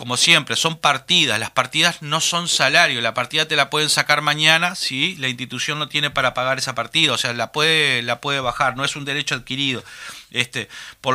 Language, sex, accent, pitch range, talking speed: Spanish, male, Argentinian, 125-160 Hz, 215 wpm